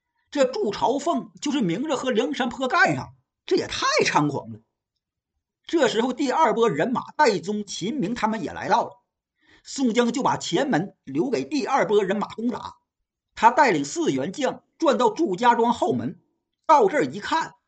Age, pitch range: 50-69, 210-305 Hz